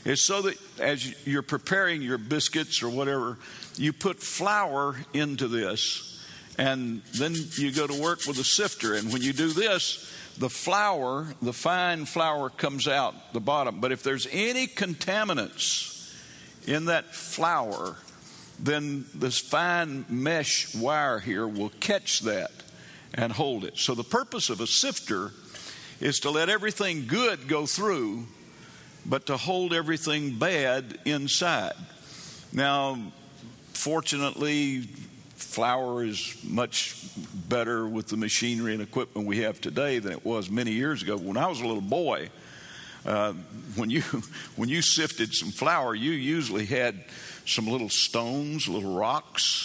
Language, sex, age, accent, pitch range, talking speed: English, male, 60-79, American, 125-165 Hz, 145 wpm